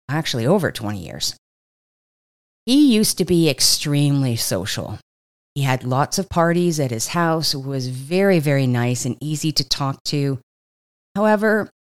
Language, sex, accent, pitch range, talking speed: English, female, American, 135-180 Hz, 140 wpm